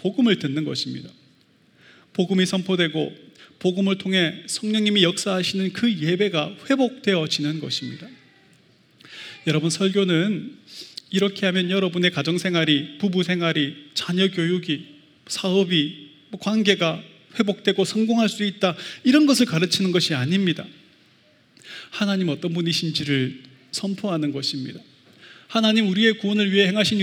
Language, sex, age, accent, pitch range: Korean, male, 30-49, native, 160-200 Hz